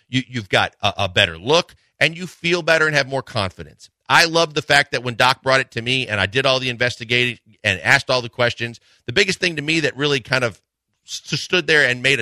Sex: male